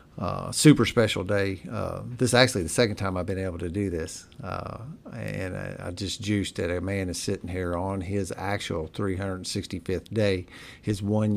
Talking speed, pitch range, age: 190 wpm, 90-110 Hz, 50-69